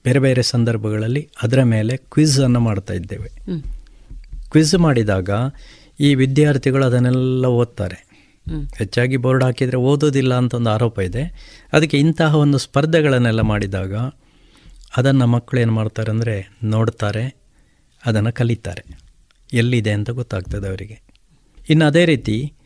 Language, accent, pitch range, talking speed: Kannada, native, 105-130 Hz, 110 wpm